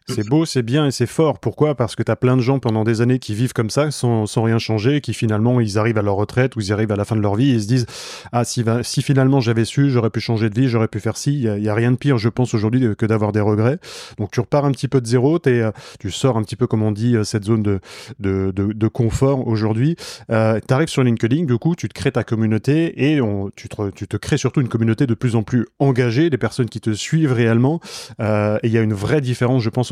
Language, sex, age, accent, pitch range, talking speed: French, male, 20-39, French, 110-135 Hz, 290 wpm